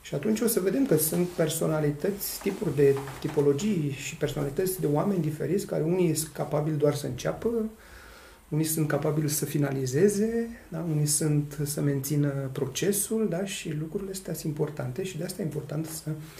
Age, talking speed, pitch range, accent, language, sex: 40-59, 160 wpm, 140-175 Hz, native, Romanian, male